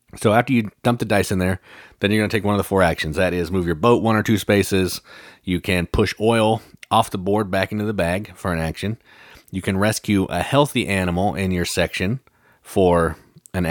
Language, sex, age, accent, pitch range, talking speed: English, male, 30-49, American, 85-105 Hz, 230 wpm